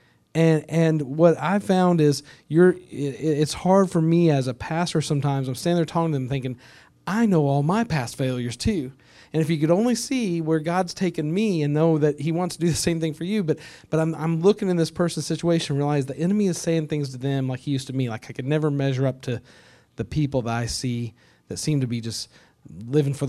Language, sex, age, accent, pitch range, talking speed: English, male, 40-59, American, 125-155 Hz, 240 wpm